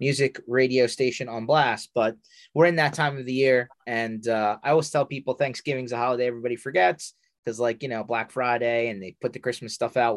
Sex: male